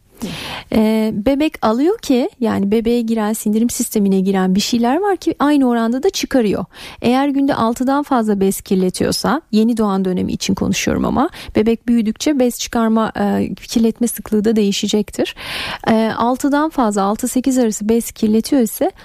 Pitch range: 210-255 Hz